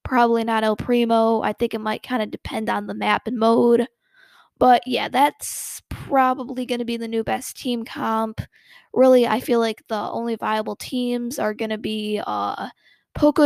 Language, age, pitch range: English, 10-29, 215-245 Hz